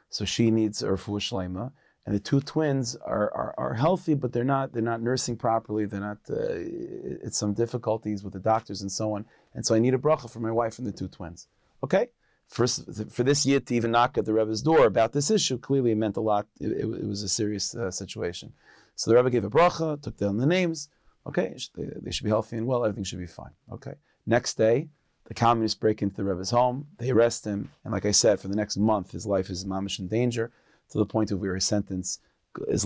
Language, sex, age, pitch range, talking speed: English, male, 30-49, 100-125 Hz, 235 wpm